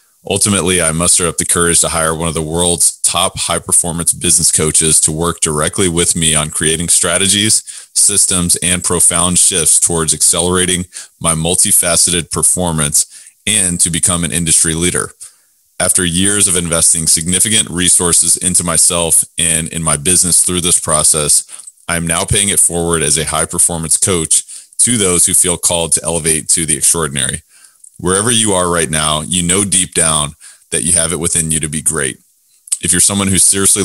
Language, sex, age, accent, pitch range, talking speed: English, male, 30-49, American, 80-90 Hz, 175 wpm